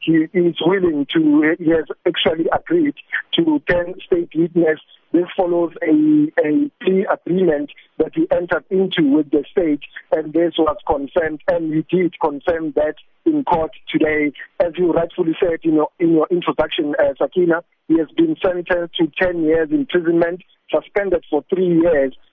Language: English